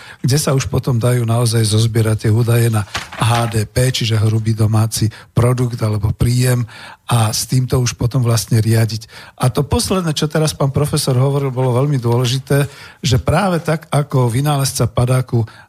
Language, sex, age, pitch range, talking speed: Slovak, male, 50-69, 115-135 Hz, 155 wpm